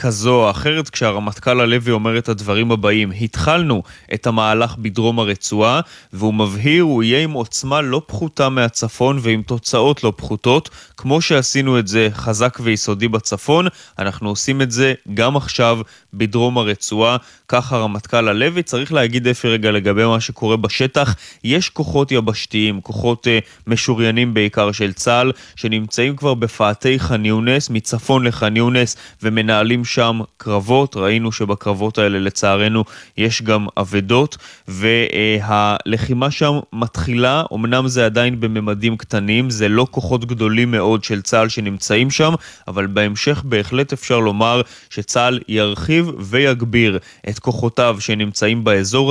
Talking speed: 130 wpm